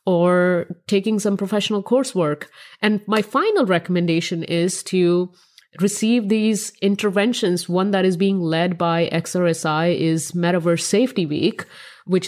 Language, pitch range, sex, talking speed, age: English, 170-210 Hz, female, 125 wpm, 30-49